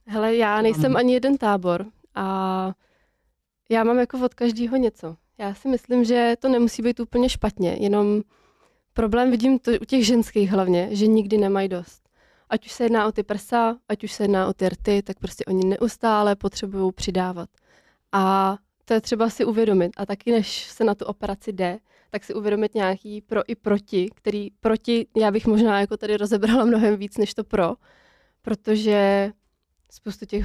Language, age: Czech, 20-39